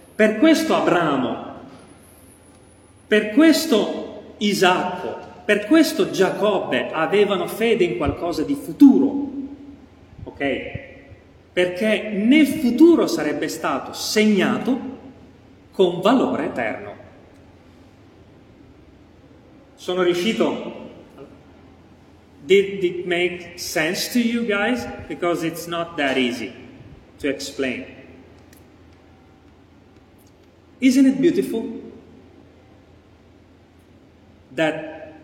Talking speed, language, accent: 75 wpm, Italian, native